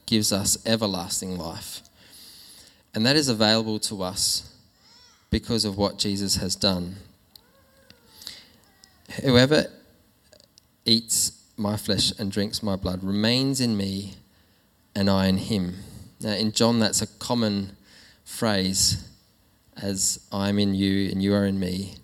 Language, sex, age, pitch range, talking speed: English, male, 20-39, 95-110 Hz, 130 wpm